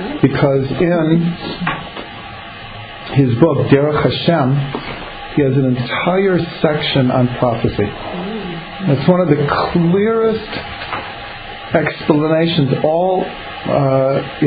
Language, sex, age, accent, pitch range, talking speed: English, male, 50-69, American, 135-165 Hz, 85 wpm